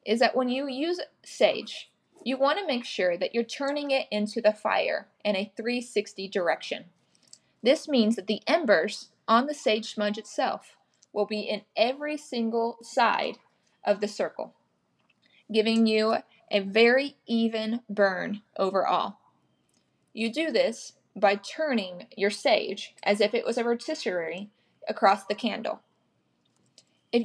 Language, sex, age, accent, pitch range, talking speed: English, female, 20-39, American, 200-245 Hz, 140 wpm